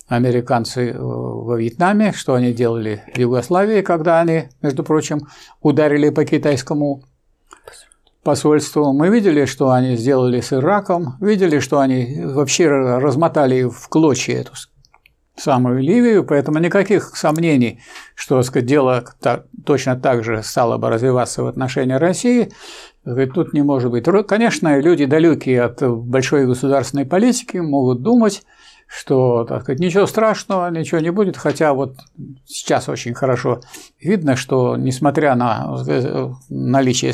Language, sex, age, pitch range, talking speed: Russian, male, 60-79, 125-160 Hz, 130 wpm